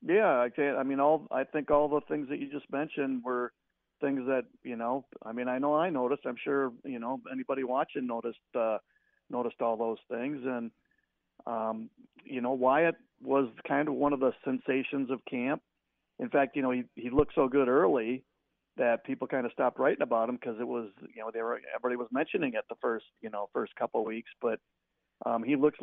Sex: male